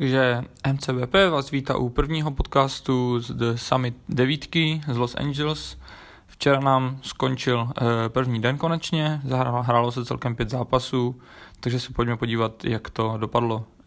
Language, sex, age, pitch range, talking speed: Czech, male, 20-39, 115-135 Hz, 145 wpm